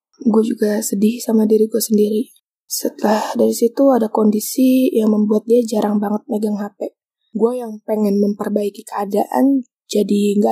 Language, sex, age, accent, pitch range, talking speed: Indonesian, female, 20-39, native, 215-260 Hz, 150 wpm